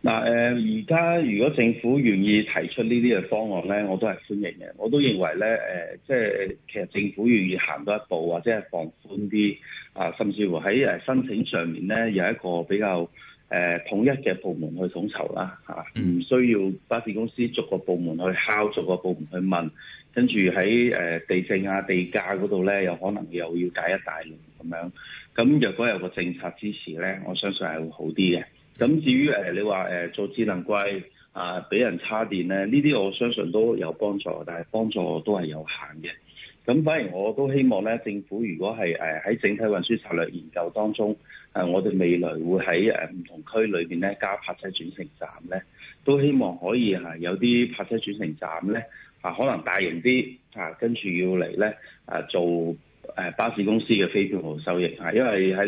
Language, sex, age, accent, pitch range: Chinese, male, 30-49, native, 90-110 Hz